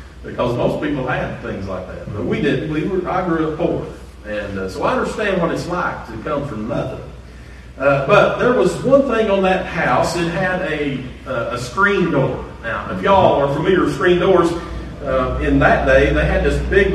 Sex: male